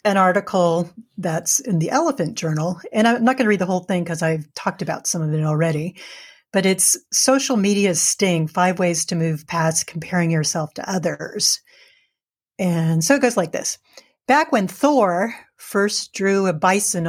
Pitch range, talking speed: 175-215 Hz, 180 wpm